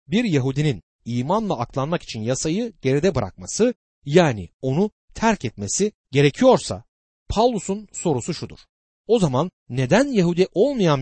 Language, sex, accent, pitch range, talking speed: Turkish, male, native, 110-180 Hz, 115 wpm